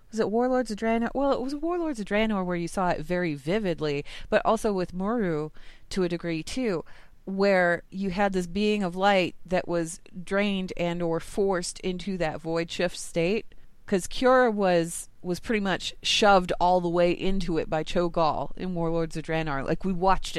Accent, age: American, 30-49